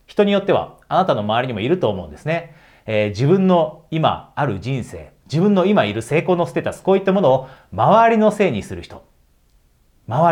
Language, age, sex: Japanese, 40-59, male